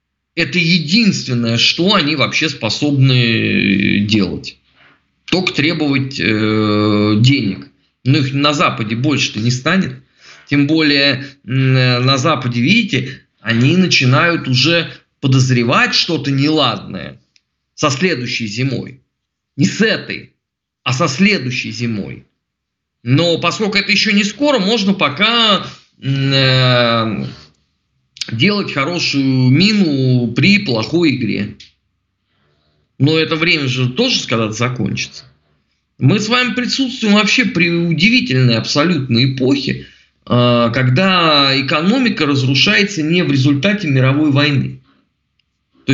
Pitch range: 120-170 Hz